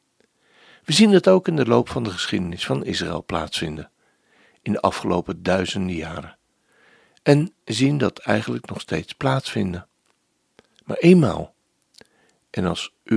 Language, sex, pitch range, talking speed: Dutch, male, 90-140 Hz, 135 wpm